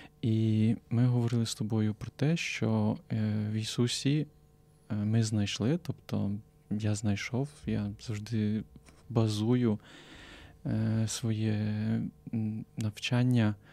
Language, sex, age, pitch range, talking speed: Ukrainian, male, 20-39, 110-125 Hz, 85 wpm